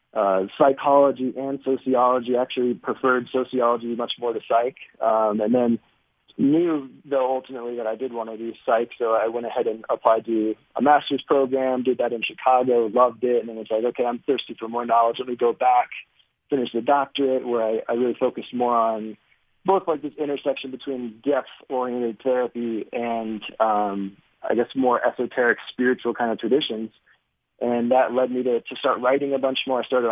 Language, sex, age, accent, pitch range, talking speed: English, male, 20-39, American, 115-130 Hz, 190 wpm